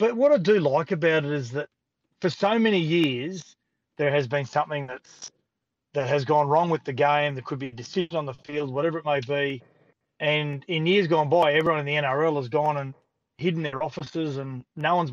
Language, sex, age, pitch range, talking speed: English, male, 30-49, 140-170 Hz, 220 wpm